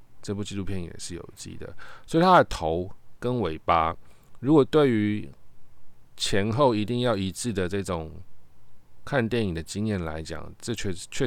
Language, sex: Chinese, male